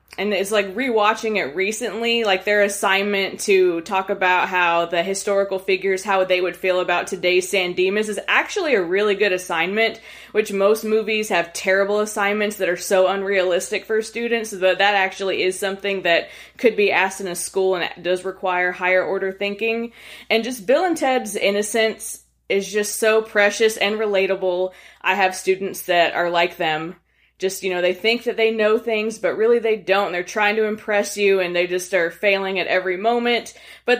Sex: female